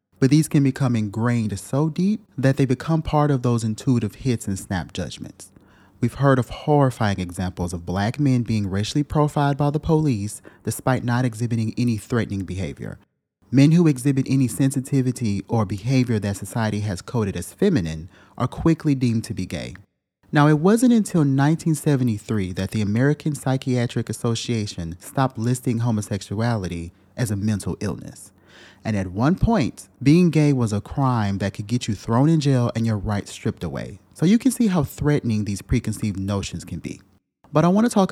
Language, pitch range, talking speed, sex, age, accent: English, 105-145 Hz, 175 wpm, male, 30-49, American